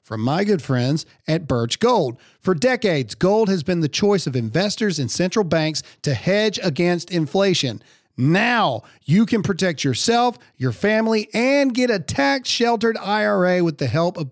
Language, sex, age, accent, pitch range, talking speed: English, male, 40-59, American, 145-210 Hz, 165 wpm